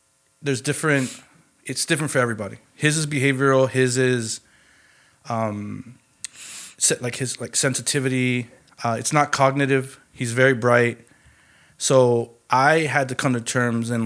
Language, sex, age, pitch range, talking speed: English, male, 20-39, 115-135 Hz, 130 wpm